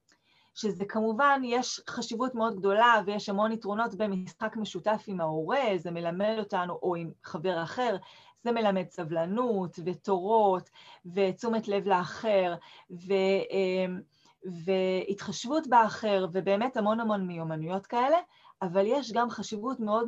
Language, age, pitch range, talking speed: Hebrew, 30-49, 190-230 Hz, 120 wpm